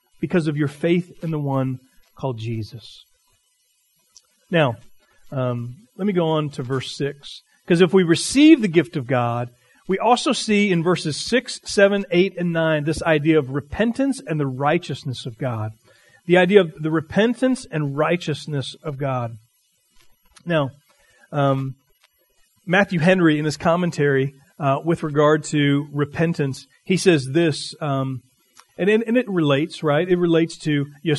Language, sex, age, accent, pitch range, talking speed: English, male, 40-59, American, 140-180 Hz, 150 wpm